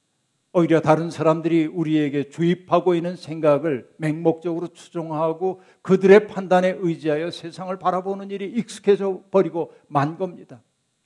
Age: 60-79